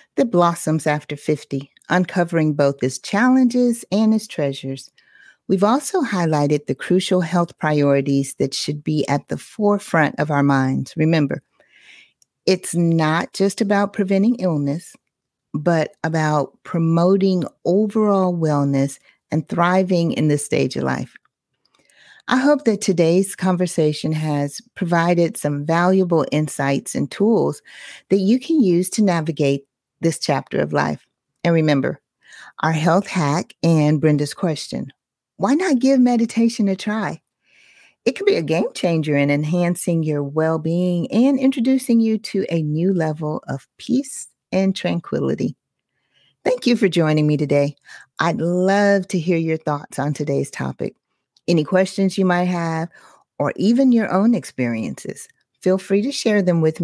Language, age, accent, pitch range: English, 40-59, American, 150-195 Hz